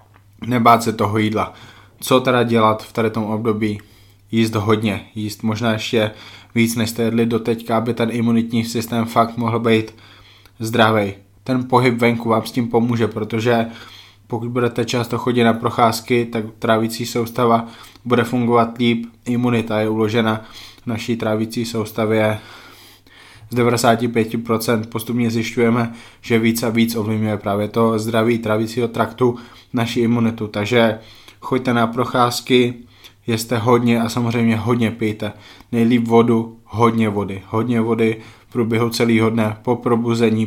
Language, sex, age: Slovak, male, 20-39